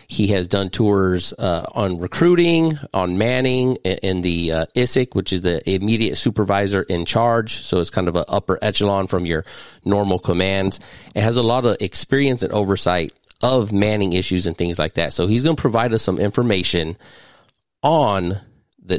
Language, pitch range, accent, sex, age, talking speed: English, 85-110 Hz, American, male, 30-49, 175 wpm